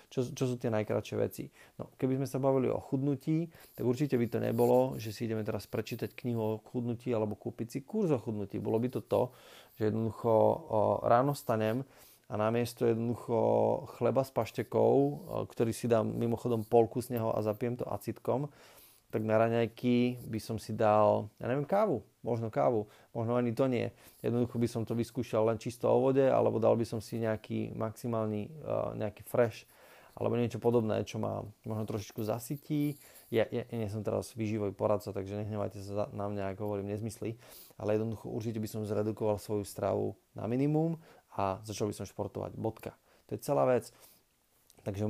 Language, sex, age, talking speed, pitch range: Slovak, male, 30-49, 180 wpm, 105-120 Hz